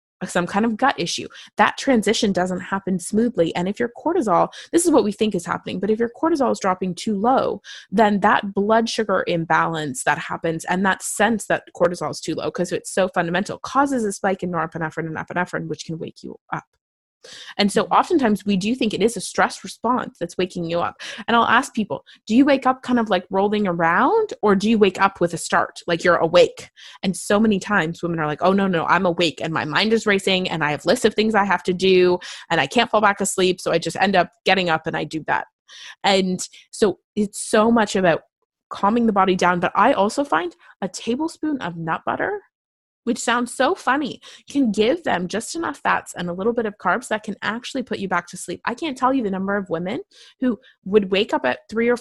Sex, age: female, 20-39